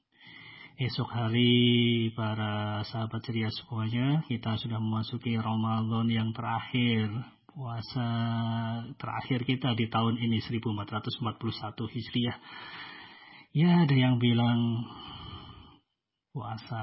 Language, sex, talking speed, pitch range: Malay, male, 90 wpm, 115-140 Hz